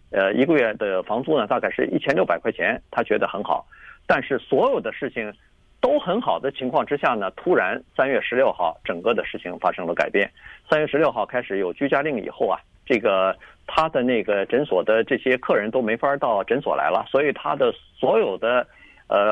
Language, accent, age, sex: Chinese, native, 50-69, male